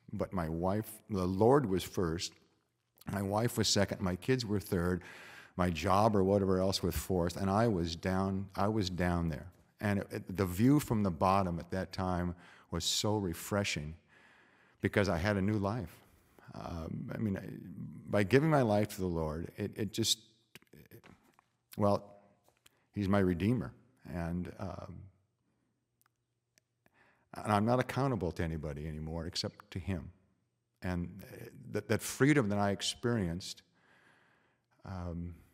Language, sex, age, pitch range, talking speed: English, male, 50-69, 90-115 Hz, 150 wpm